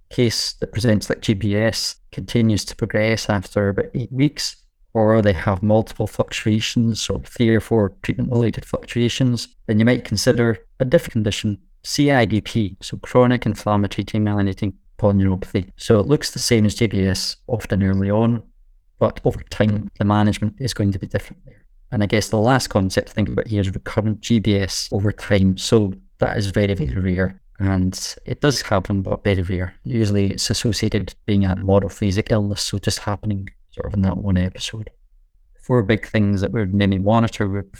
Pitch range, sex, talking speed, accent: 100-115 Hz, male, 175 wpm, British